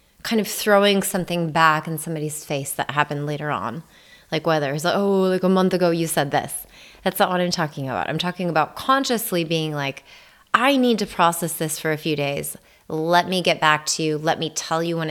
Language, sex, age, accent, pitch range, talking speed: English, female, 20-39, American, 150-175 Hz, 225 wpm